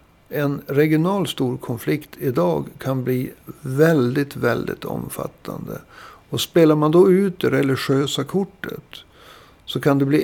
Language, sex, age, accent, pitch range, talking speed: Swedish, male, 60-79, native, 130-160 Hz, 130 wpm